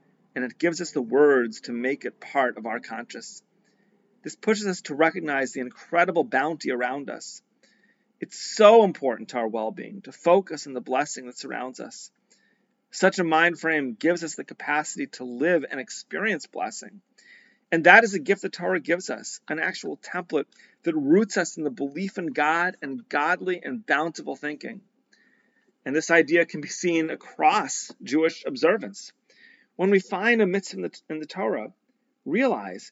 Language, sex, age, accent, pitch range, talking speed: English, male, 40-59, American, 140-205 Hz, 170 wpm